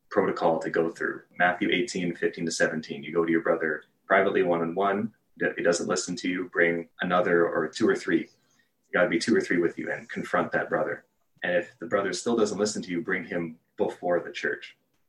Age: 30-49